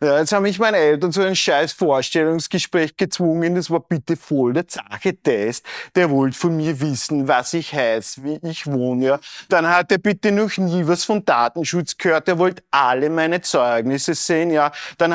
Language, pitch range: German, 140-185 Hz